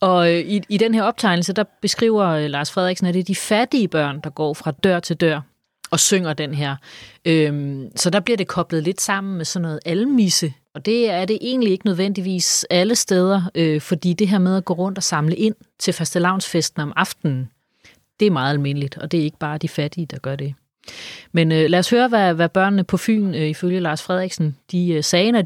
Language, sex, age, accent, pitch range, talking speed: Danish, female, 30-49, native, 160-215 Hz, 205 wpm